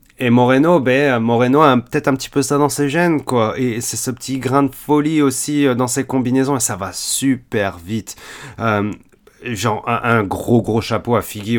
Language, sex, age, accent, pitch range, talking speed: French, male, 30-49, French, 110-135 Hz, 200 wpm